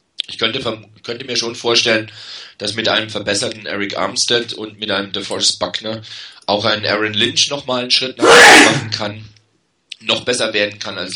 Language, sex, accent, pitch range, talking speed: German, male, German, 105-130 Hz, 170 wpm